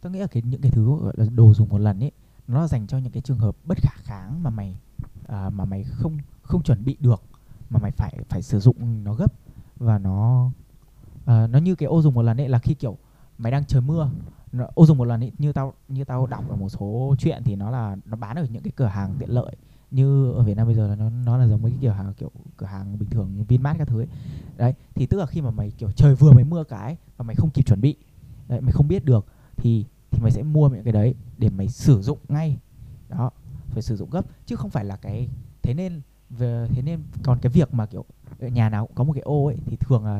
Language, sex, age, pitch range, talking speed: Vietnamese, male, 20-39, 115-140 Hz, 265 wpm